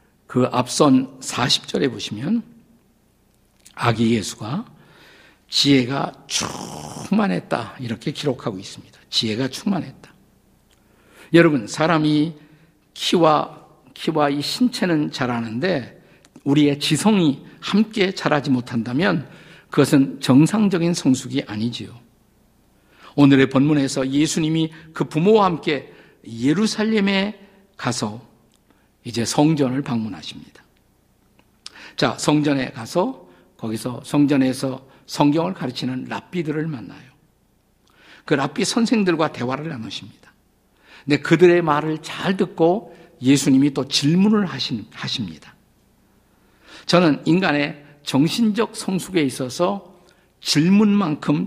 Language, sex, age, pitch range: Korean, male, 50-69, 130-170 Hz